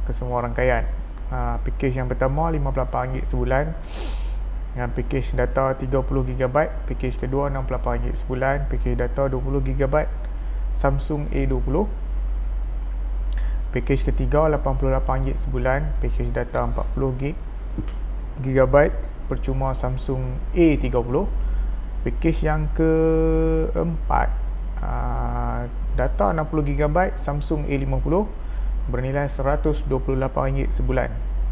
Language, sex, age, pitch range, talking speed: Malay, male, 30-49, 115-140 Hz, 80 wpm